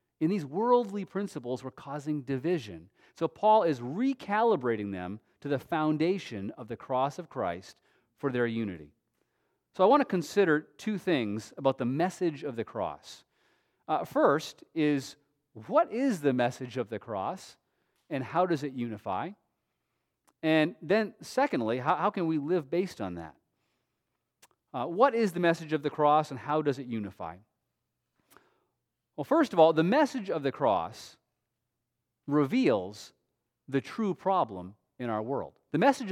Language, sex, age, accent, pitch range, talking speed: English, male, 30-49, American, 135-200 Hz, 155 wpm